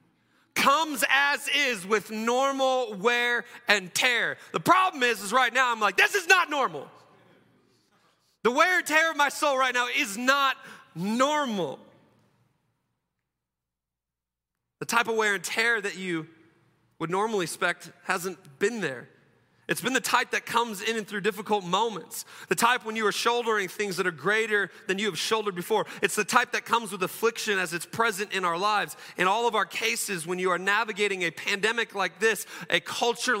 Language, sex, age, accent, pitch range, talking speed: English, male, 30-49, American, 165-225 Hz, 180 wpm